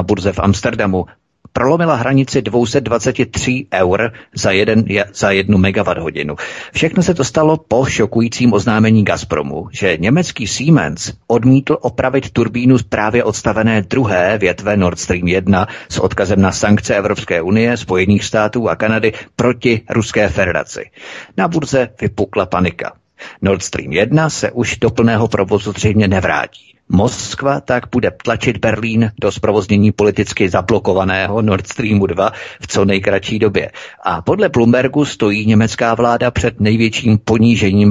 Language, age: Czech, 50-69